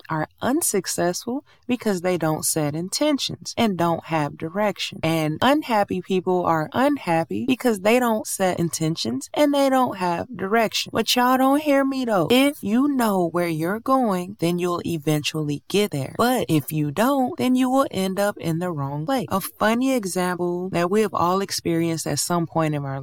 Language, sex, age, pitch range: English, female, 20-39, 165-220 Hz